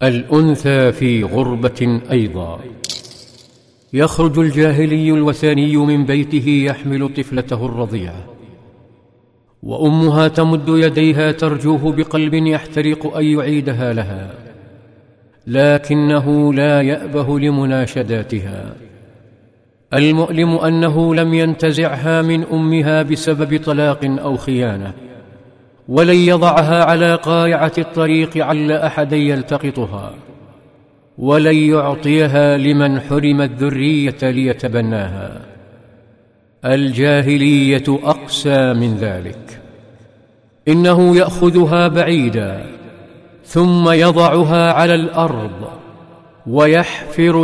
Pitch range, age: 120-155 Hz, 50-69